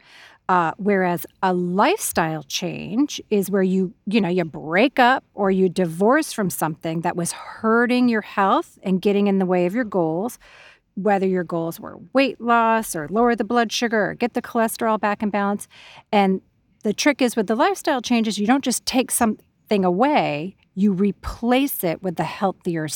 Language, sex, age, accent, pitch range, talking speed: English, female, 40-59, American, 175-235 Hz, 180 wpm